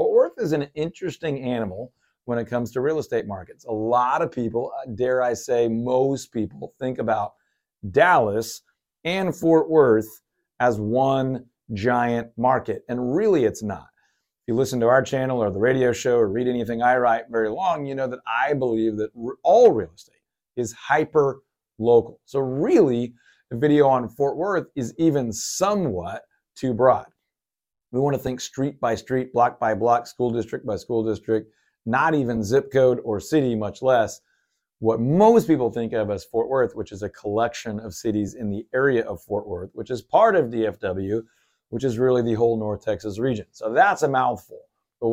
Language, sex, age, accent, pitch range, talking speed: English, male, 40-59, American, 115-140 Hz, 180 wpm